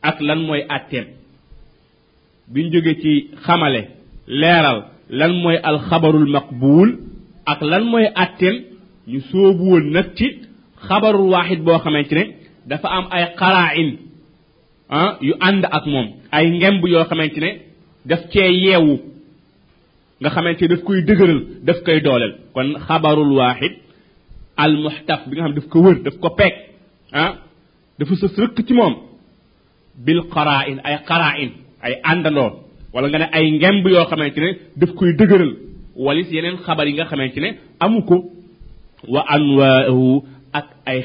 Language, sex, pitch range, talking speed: French, male, 150-190 Hz, 60 wpm